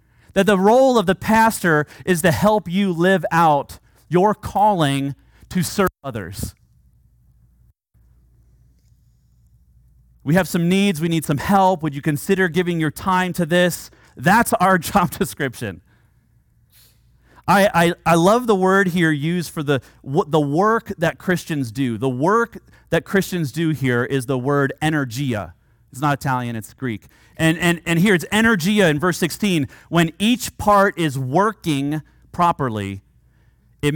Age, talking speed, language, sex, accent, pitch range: 30-49, 150 wpm, English, male, American, 120-185 Hz